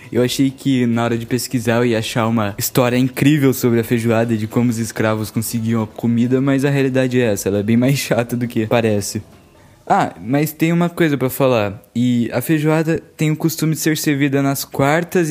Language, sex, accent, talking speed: Portuguese, male, Brazilian, 210 wpm